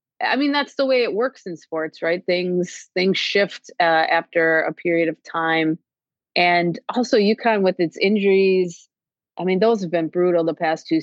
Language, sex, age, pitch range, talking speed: English, female, 30-49, 165-200 Hz, 185 wpm